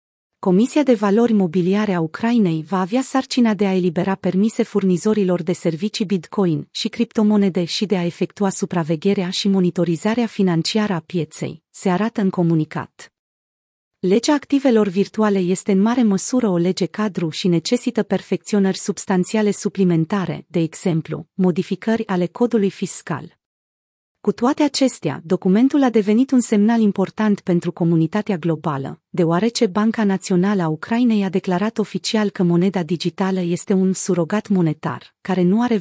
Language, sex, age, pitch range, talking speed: Romanian, female, 40-59, 175-215 Hz, 140 wpm